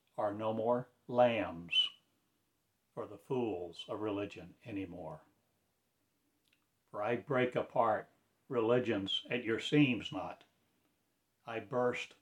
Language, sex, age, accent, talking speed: English, male, 60-79, American, 105 wpm